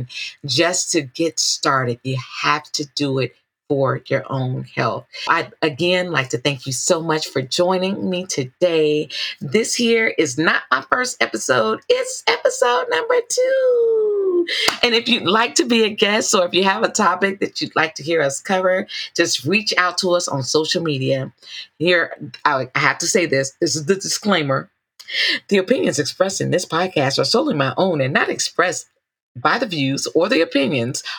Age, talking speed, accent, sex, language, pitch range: 40-59, 180 wpm, American, female, English, 145-195 Hz